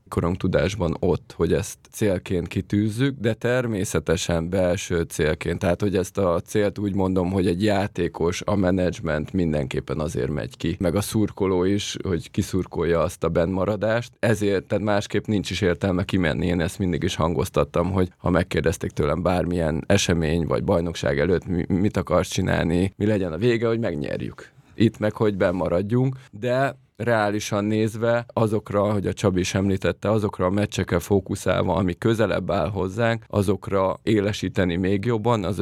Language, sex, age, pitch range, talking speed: English, male, 20-39, 90-105 Hz, 155 wpm